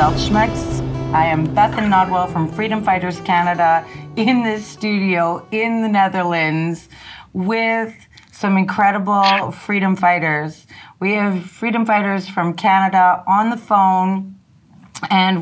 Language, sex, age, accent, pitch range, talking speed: Dutch, female, 30-49, American, 170-200 Hz, 115 wpm